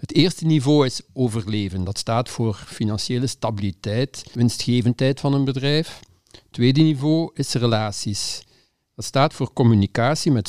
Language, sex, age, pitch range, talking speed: Dutch, male, 50-69, 110-145 Hz, 135 wpm